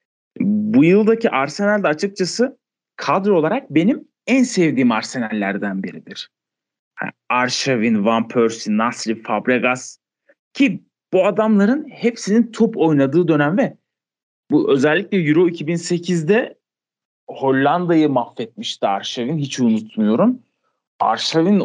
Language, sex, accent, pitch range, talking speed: Turkish, male, native, 125-205 Hz, 95 wpm